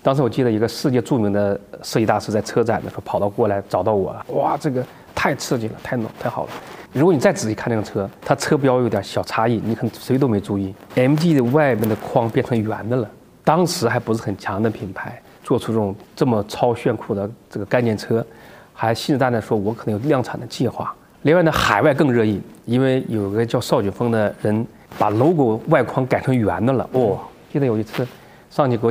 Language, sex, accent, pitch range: Chinese, male, native, 110-135 Hz